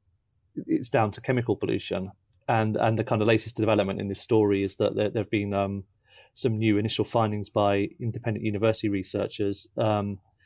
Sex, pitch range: male, 105-110 Hz